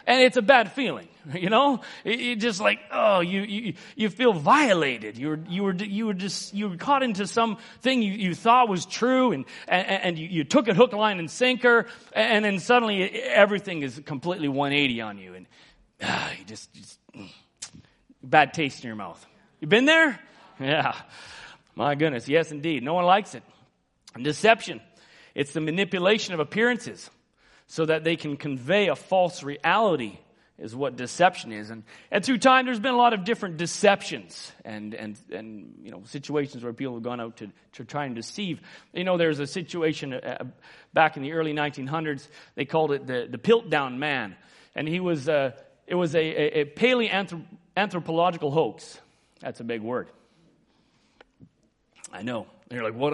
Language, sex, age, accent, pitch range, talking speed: English, male, 40-59, American, 145-210 Hz, 180 wpm